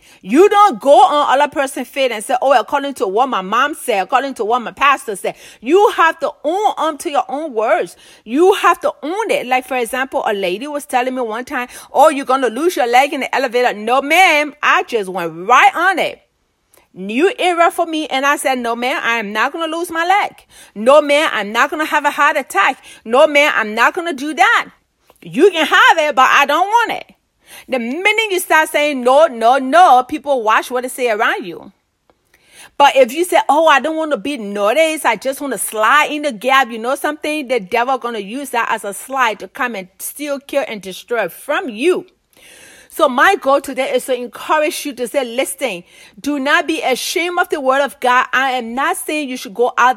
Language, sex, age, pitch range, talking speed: English, female, 40-59, 250-335 Hz, 230 wpm